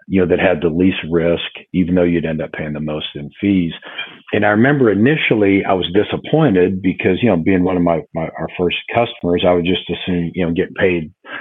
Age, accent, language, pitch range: 50-69, American, English, 85-100 Hz